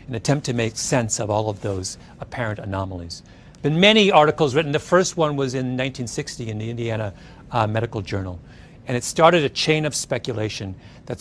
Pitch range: 110-155 Hz